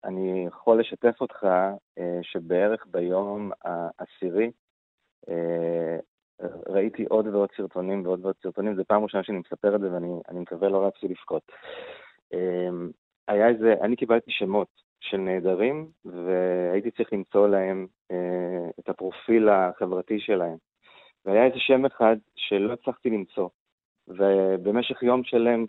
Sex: male